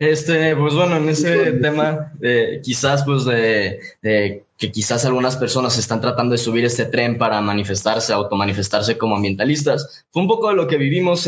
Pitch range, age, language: 115-155 Hz, 20-39, Spanish